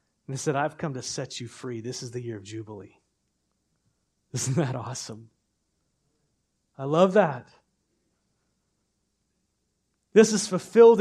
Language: English